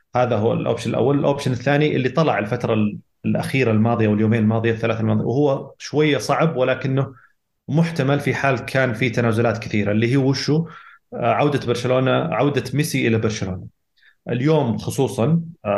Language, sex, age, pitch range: Arabic, male, 30-49, 110-130 Hz